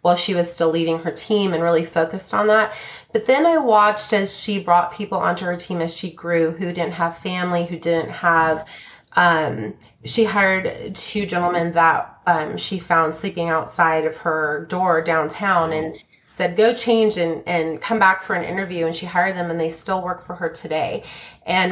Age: 30-49